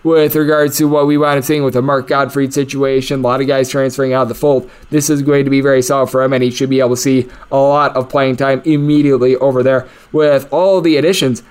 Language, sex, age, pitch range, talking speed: English, male, 20-39, 135-170 Hz, 260 wpm